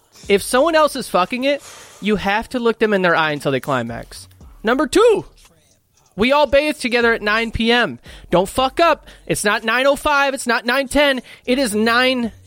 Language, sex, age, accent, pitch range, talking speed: English, male, 20-39, American, 185-260 Hz, 185 wpm